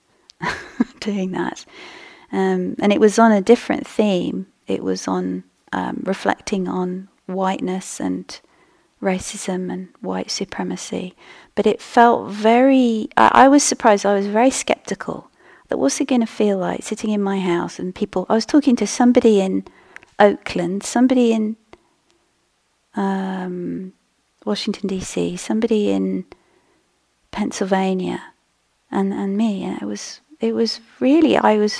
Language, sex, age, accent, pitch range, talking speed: English, female, 40-59, British, 185-225 Hz, 135 wpm